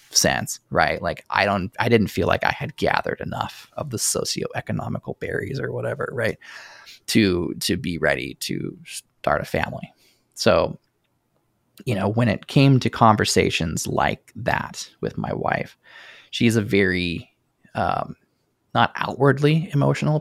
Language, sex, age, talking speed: English, male, 20-39, 145 wpm